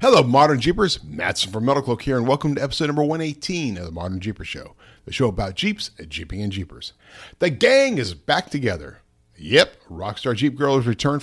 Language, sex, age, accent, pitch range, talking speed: English, male, 50-69, American, 100-150 Hz, 190 wpm